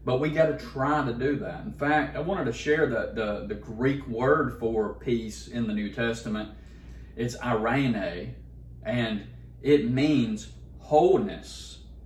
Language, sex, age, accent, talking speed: English, male, 40-59, American, 155 wpm